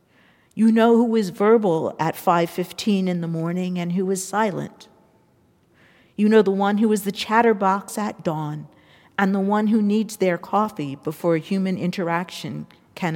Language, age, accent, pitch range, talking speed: English, 50-69, American, 155-195 Hz, 160 wpm